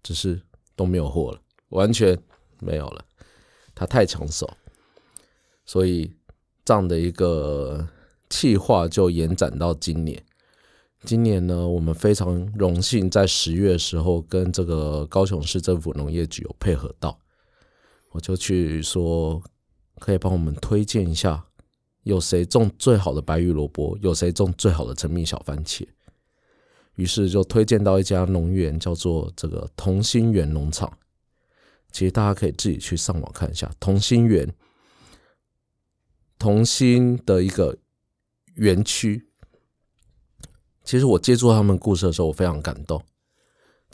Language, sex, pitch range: Chinese, male, 80-100 Hz